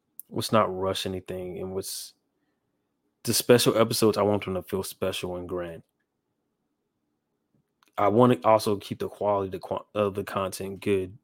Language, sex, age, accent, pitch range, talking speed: English, male, 20-39, American, 95-110 Hz, 150 wpm